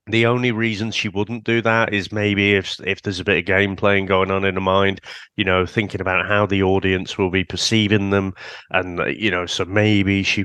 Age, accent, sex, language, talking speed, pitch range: 30-49, British, male, English, 225 wpm, 95-120 Hz